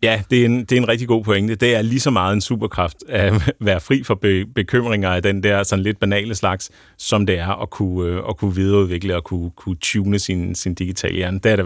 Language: Danish